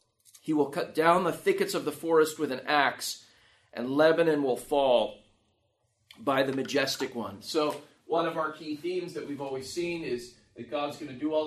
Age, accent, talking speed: 30-49, American, 195 wpm